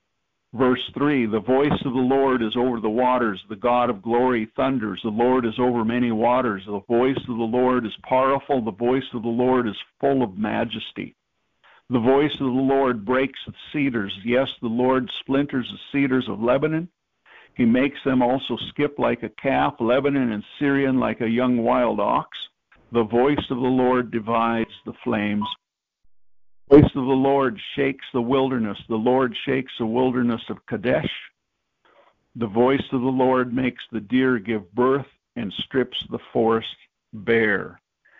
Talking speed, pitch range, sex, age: 170 wpm, 115-135 Hz, male, 50-69